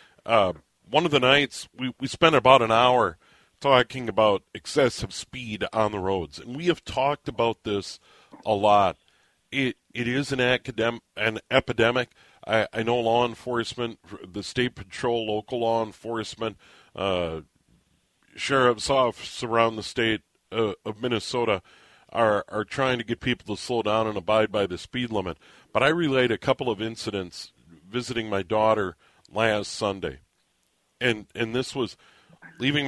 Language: English